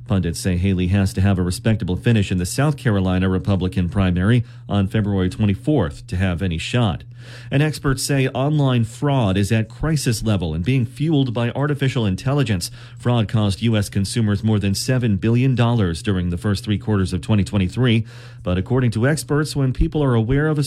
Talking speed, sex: 180 wpm, male